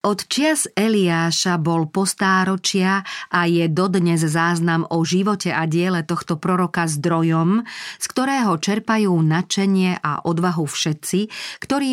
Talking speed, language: 115 wpm, Slovak